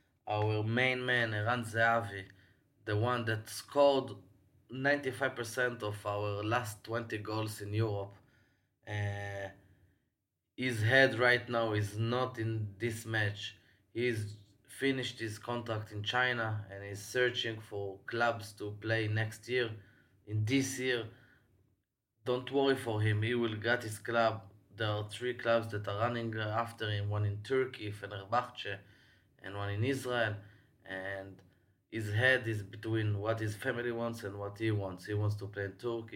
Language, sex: English, male